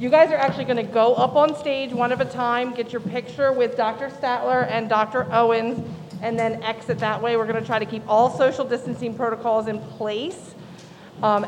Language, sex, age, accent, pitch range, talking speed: English, female, 40-59, American, 215-265 Hz, 210 wpm